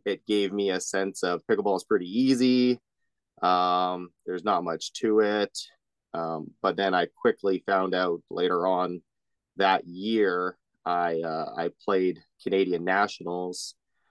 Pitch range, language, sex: 90-105 Hz, English, male